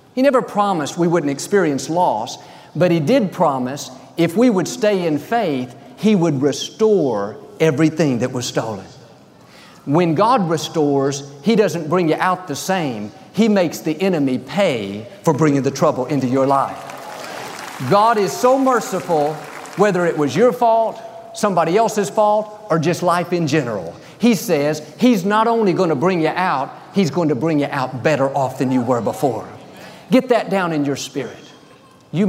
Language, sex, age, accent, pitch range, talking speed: English, male, 50-69, American, 145-195 Hz, 165 wpm